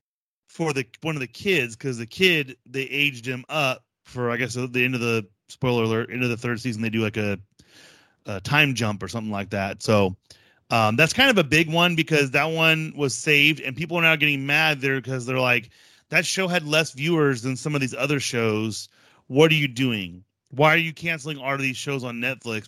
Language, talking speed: English, 230 wpm